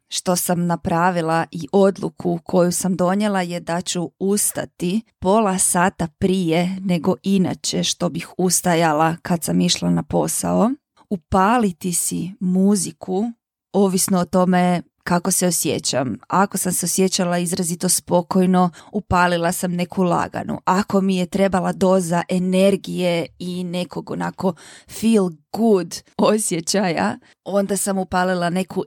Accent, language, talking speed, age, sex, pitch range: native, Croatian, 125 wpm, 20-39, female, 175-200 Hz